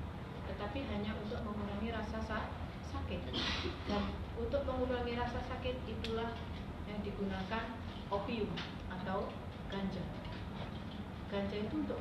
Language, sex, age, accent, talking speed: Indonesian, female, 30-49, native, 100 wpm